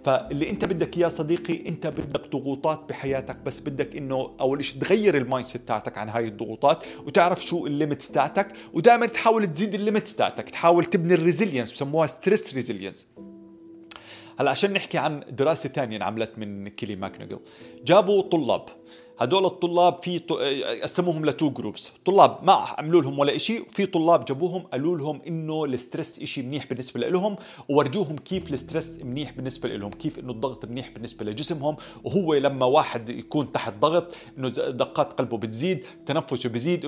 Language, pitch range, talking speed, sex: Arabic, 125-165 Hz, 155 wpm, male